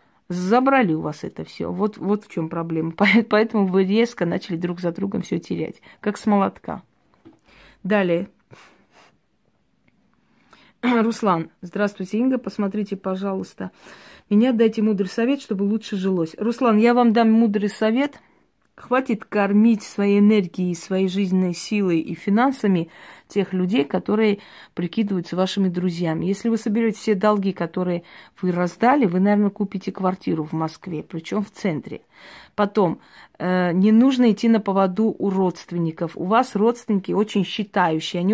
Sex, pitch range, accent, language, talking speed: female, 185-220 Hz, native, Russian, 135 wpm